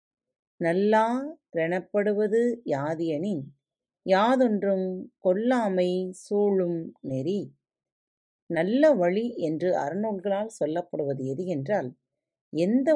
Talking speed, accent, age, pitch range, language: 65 wpm, native, 30-49, 150-225 Hz, Tamil